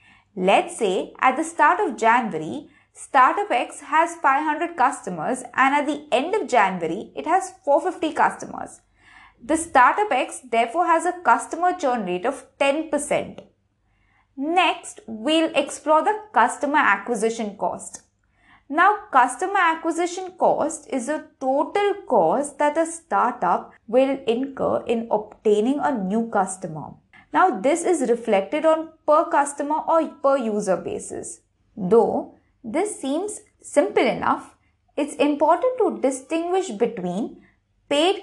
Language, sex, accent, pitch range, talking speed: English, female, Indian, 235-320 Hz, 125 wpm